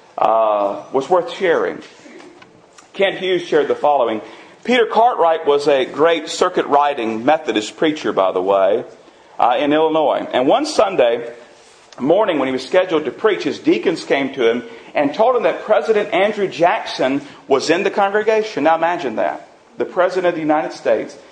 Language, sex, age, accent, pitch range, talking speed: English, male, 40-59, American, 145-225 Hz, 165 wpm